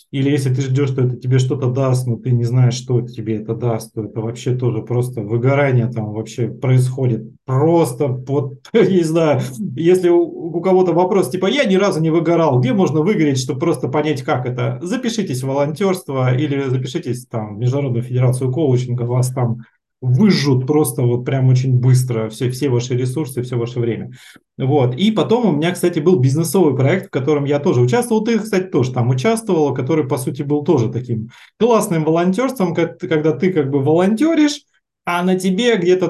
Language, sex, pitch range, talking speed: Russian, male, 125-175 Hz, 185 wpm